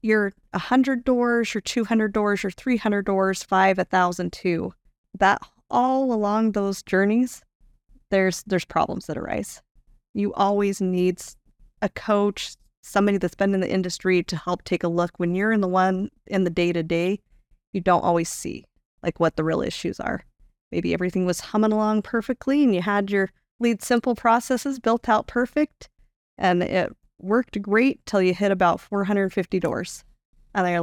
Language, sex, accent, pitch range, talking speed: English, female, American, 175-220 Hz, 165 wpm